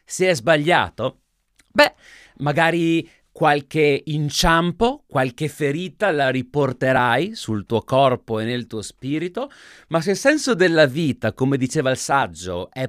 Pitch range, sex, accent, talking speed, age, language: 130-220 Hz, male, native, 135 wpm, 30-49, Italian